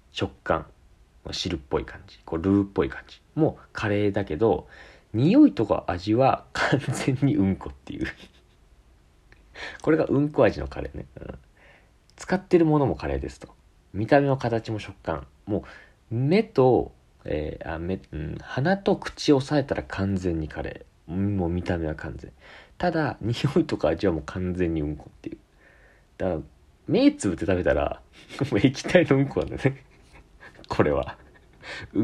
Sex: male